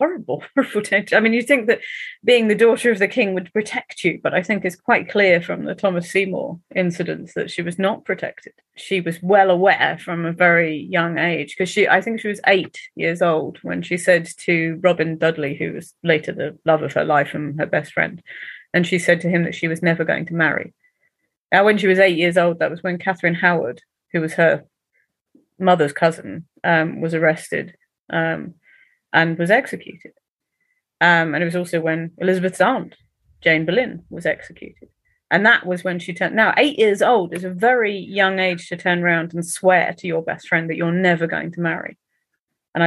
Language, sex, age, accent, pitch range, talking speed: English, female, 30-49, British, 165-190 Hz, 205 wpm